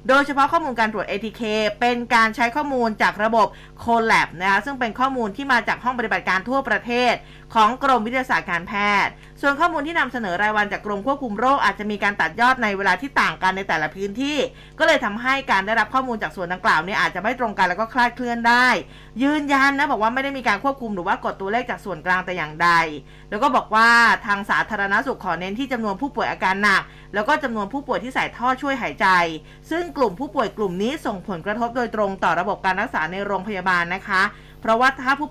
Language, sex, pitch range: Thai, female, 195-250 Hz